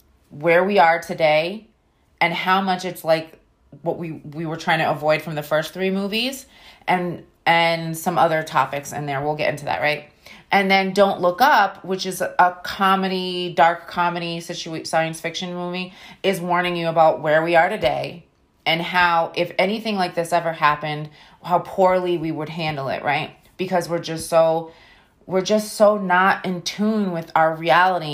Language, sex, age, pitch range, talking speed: English, female, 30-49, 155-185 Hz, 180 wpm